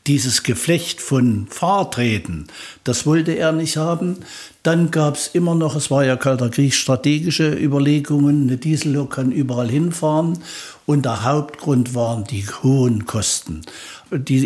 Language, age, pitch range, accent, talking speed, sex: German, 60-79, 125-155 Hz, German, 140 wpm, male